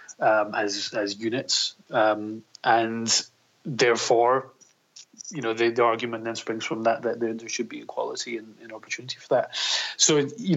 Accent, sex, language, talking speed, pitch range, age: British, male, English, 165 wpm, 110-130 Hz, 30-49